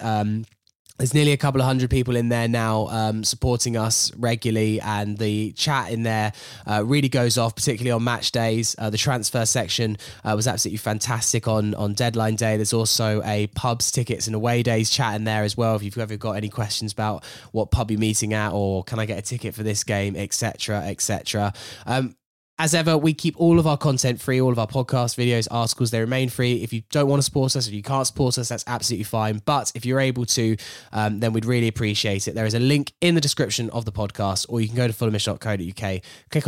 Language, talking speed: English, 225 wpm